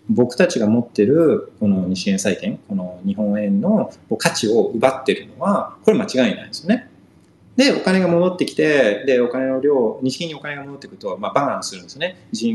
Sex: male